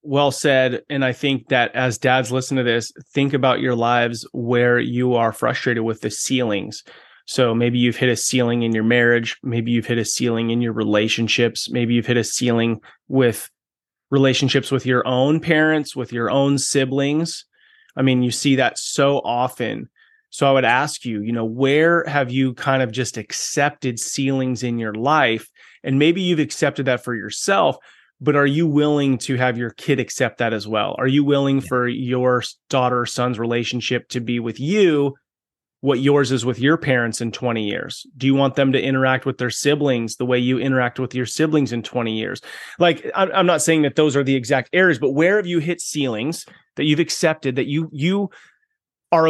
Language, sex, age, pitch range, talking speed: English, male, 30-49, 120-145 Hz, 195 wpm